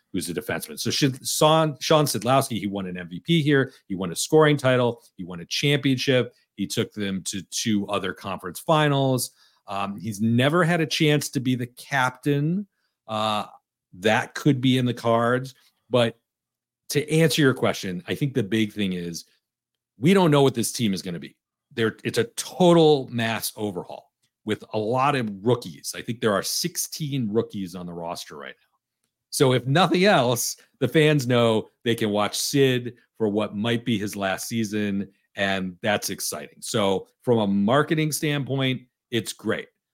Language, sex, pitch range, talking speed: English, male, 105-130 Hz, 175 wpm